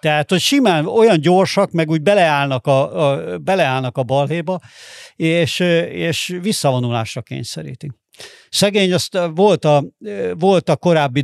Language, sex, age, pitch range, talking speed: Hungarian, male, 50-69, 130-160 Hz, 130 wpm